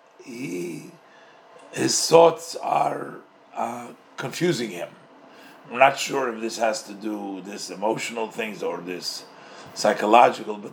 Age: 50-69